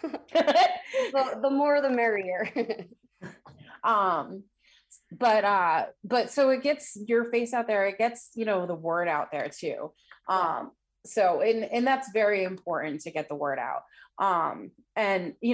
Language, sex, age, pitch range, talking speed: English, female, 20-39, 160-210 Hz, 155 wpm